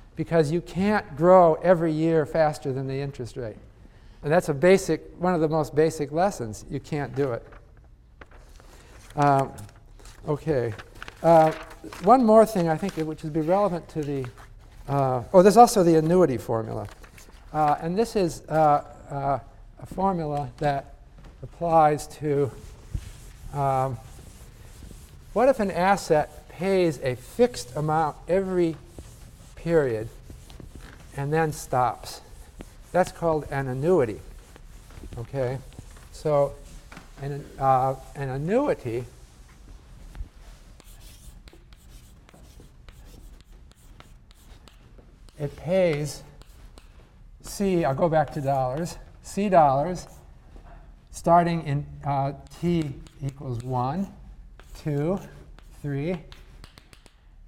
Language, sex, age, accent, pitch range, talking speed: English, male, 50-69, American, 115-165 Hz, 100 wpm